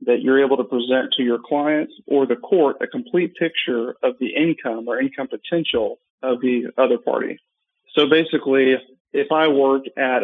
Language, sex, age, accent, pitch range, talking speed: English, male, 40-59, American, 125-150 Hz, 180 wpm